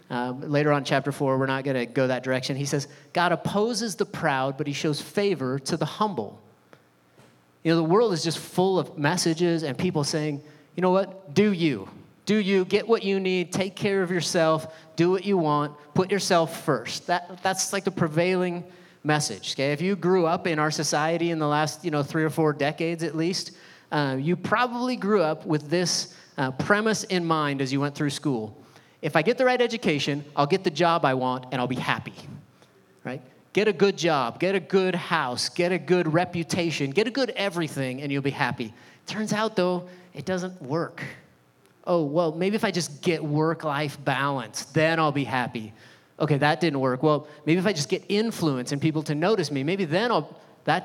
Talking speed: 210 wpm